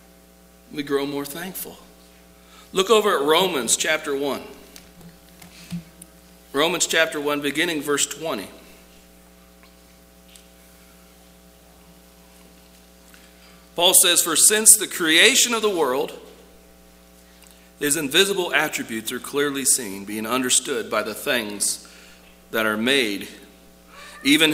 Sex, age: male, 40-59